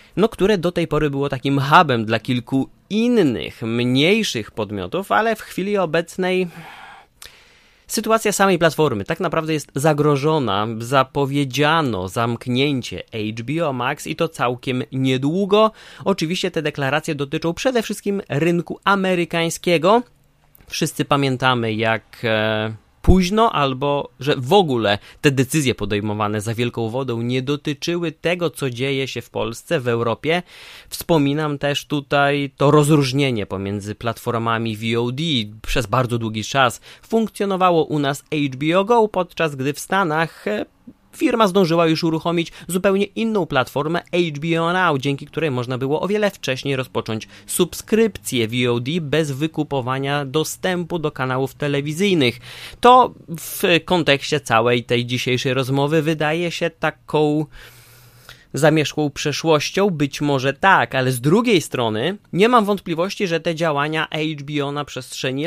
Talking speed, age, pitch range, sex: 125 wpm, 30-49, 130-175 Hz, male